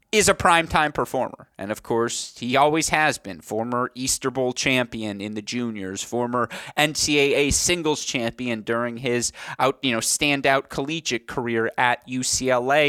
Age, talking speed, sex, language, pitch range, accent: 30-49, 150 wpm, male, English, 115-135 Hz, American